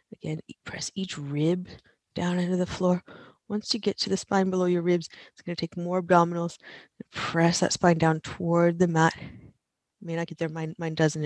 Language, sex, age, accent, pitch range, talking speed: English, female, 30-49, American, 155-180 Hz, 210 wpm